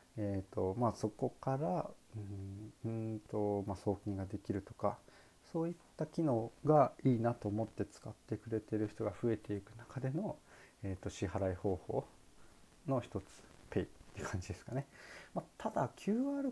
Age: 40-59